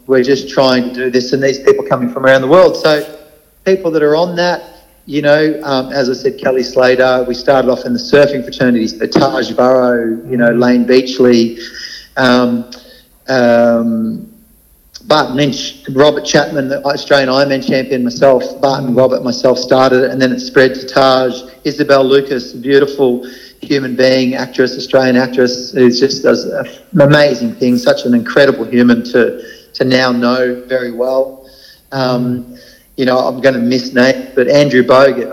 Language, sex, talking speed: English, male, 170 wpm